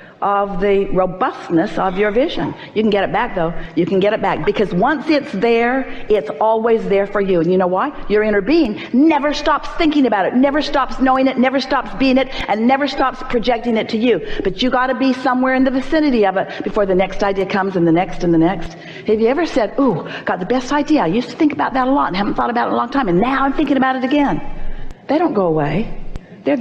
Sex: female